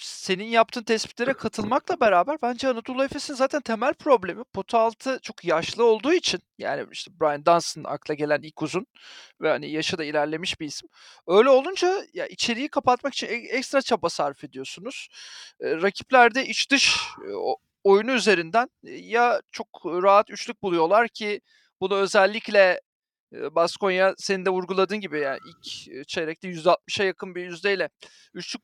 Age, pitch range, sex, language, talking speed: 40-59, 195-275 Hz, male, Turkish, 140 wpm